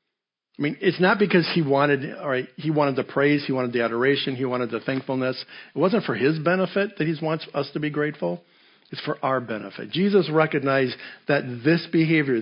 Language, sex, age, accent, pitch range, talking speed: English, male, 50-69, American, 130-165 Hz, 205 wpm